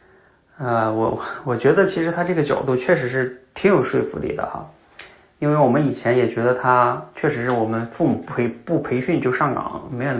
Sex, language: male, Chinese